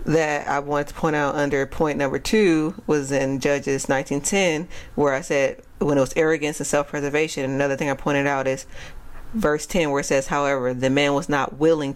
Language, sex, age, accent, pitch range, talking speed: English, female, 40-59, American, 140-170 Hz, 200 wpm